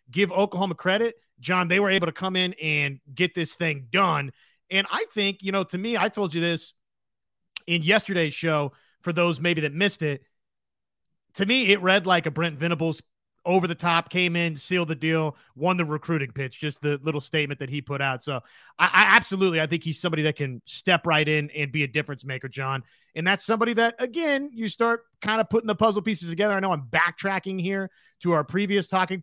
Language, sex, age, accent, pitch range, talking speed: English, male, 30-49, American, 160-215 Hz, 215 wpm